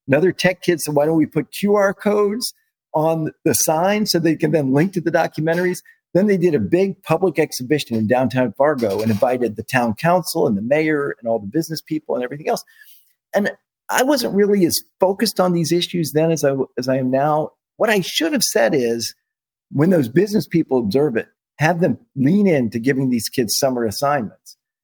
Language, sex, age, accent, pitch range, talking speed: English, male, 50-69, American, 150-210 Hz, 205 wpm